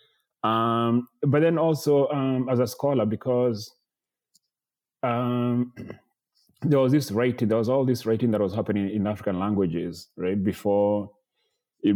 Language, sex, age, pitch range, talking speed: English, male, 30-49, 95-115 Hz, 135 wpm